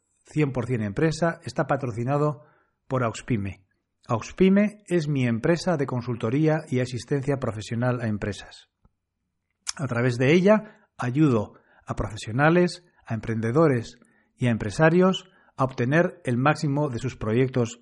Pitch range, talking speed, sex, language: 115-145 Hz, 120 wpm, male, Spanish